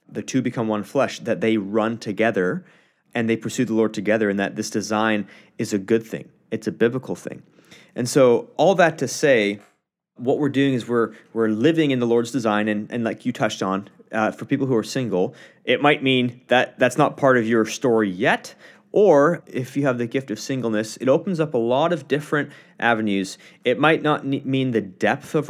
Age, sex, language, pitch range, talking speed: 30-49, male, English, 105-125 Hz, 210 wpm